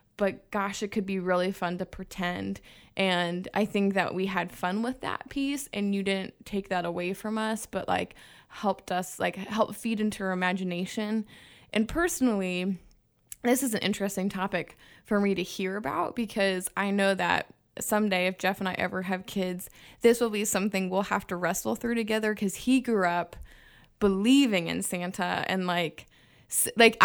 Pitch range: 190-245 Hz